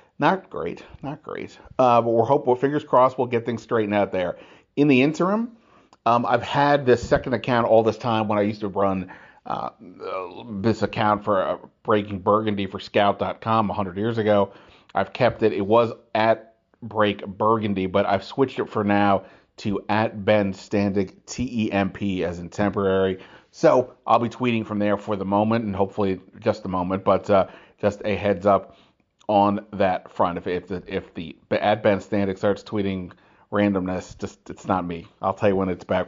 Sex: male